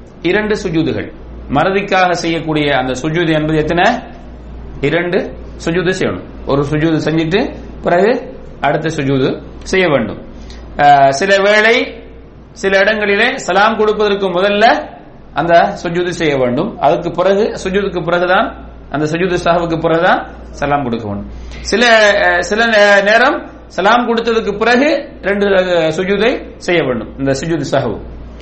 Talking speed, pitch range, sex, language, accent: 100 wpm, 155-210 Hz, male, English, Indian